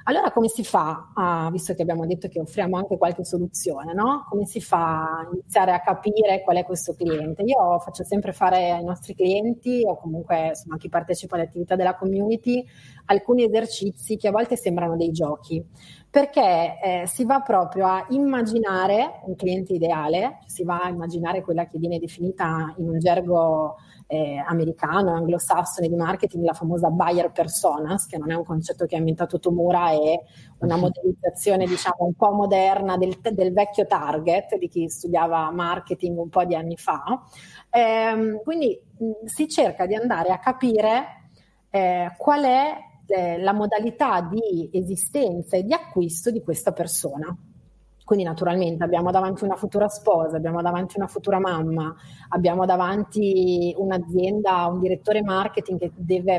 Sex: female